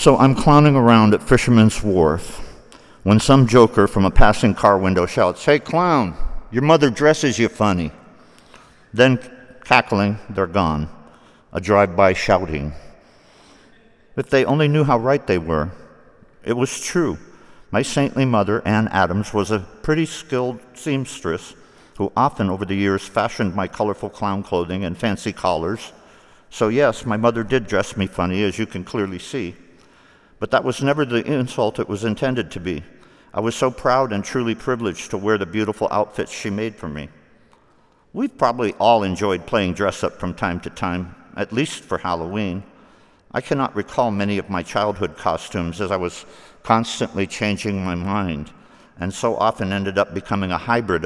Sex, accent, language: male, American, English